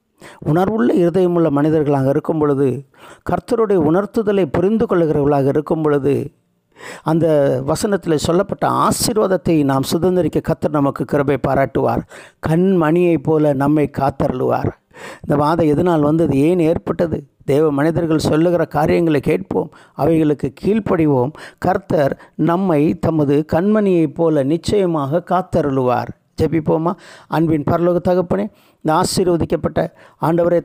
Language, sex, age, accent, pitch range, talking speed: Tamil, male, 60-79, native, 145-175 Hz, 100 wpm